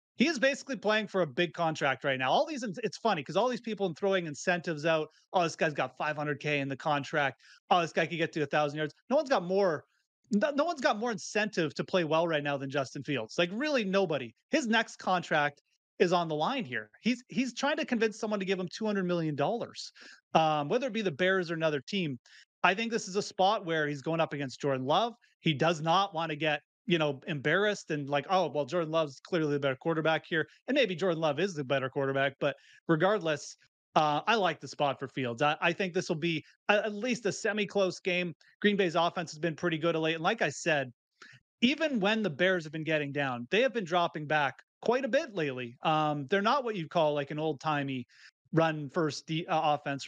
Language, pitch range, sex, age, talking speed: English, 150-200 Hz, male, 30-49, 230 wpm